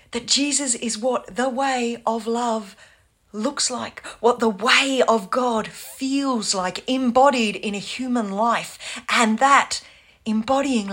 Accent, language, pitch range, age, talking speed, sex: Australian, English, 175-235 Hz, 40-59, 135 wpm, female